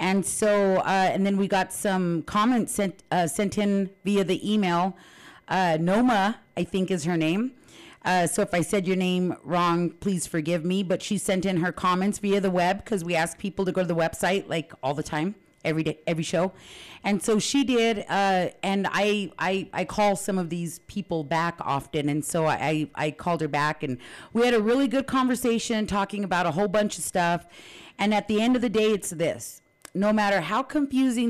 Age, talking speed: 40-59, 210 wpm